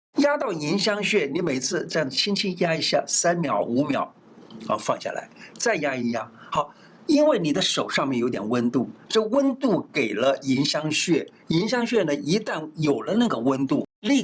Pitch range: 150-230 Hz